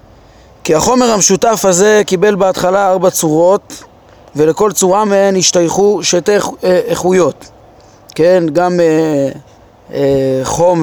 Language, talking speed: Hebrew, 110 wpm